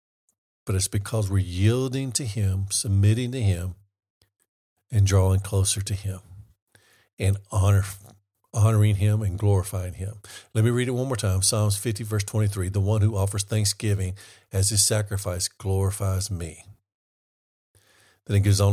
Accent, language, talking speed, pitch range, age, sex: American, English, 145 wpm, 95-110 Hz, 50-69, male